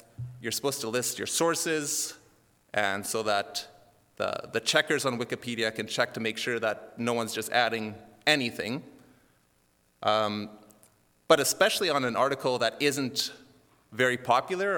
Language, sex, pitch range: English, male, 110-145 Hz